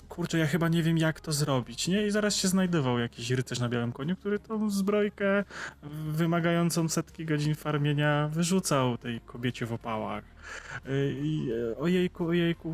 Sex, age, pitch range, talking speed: male, 20-39, 125-160 Hz, 155 wpm